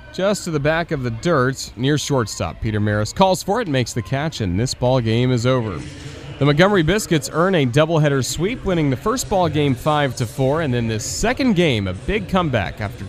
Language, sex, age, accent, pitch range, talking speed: English, male, 30-49, American, 105-145 Hz, 215 wpm